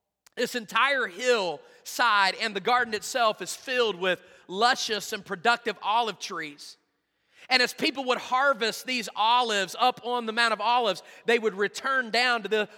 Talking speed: 160 wpm